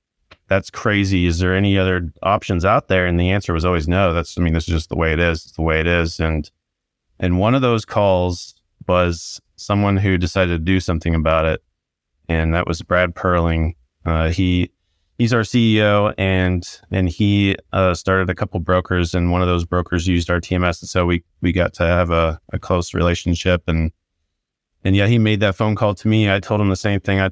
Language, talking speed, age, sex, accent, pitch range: English, 215 wpm, 30-49, male, American, 85-100 Hz